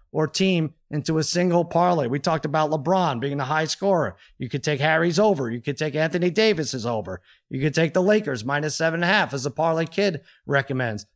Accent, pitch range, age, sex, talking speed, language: American, 135-175 Hz, 30-49, male, 215 wpm, English